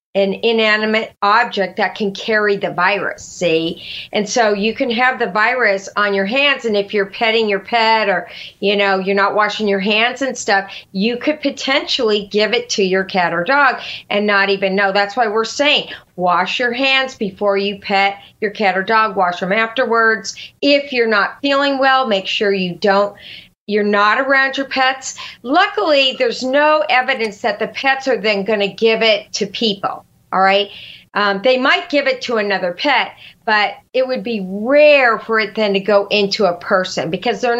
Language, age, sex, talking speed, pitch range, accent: English, 40-59, female, 190 wpm, 195-255 Hz, American